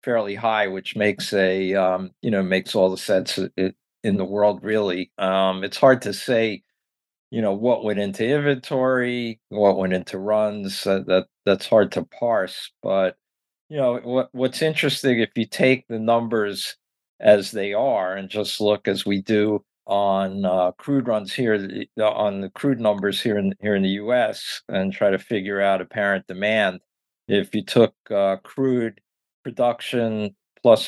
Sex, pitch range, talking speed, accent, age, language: male, 95-115 Hz, 165 wpm, American, 50-69, English